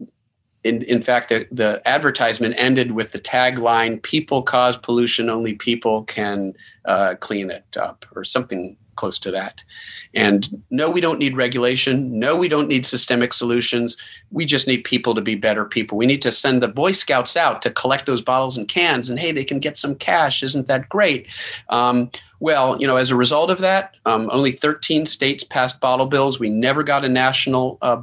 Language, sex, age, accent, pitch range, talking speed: English, male, 40-59, American, 110-130 Hz, 195 wpm